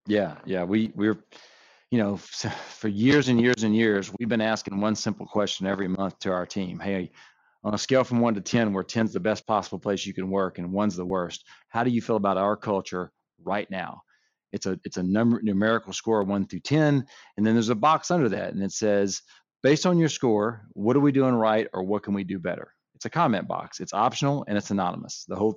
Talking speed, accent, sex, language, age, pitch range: 235 wpm, American, male, English, 40-59, 100-125 Hz